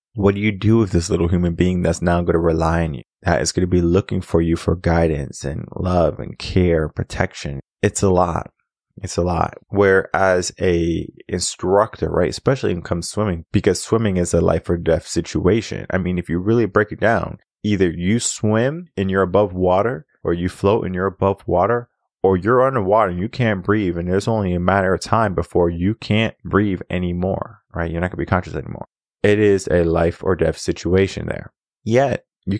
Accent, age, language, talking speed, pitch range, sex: American, 20-39, English, 205 wpm, 85-100 Hz, male